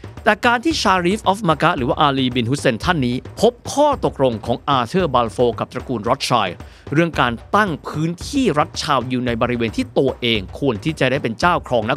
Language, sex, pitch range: Thai, male, 115-165 Hz